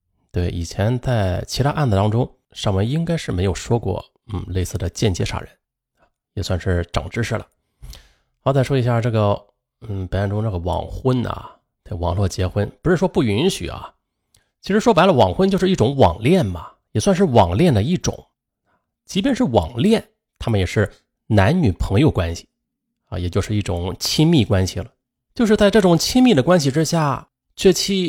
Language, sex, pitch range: Chinese, male, 95-135 Hz